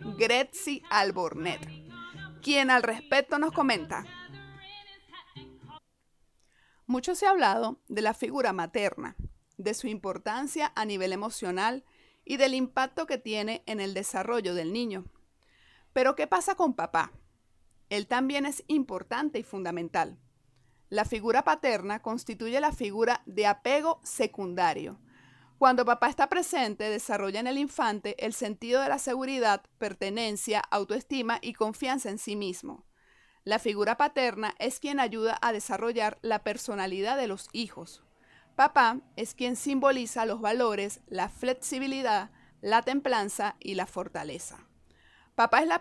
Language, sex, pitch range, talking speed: Spanish, female, 200-265 Hz, 130 wpm